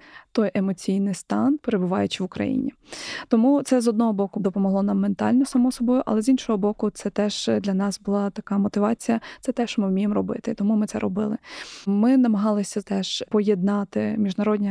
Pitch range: 200-230 Hz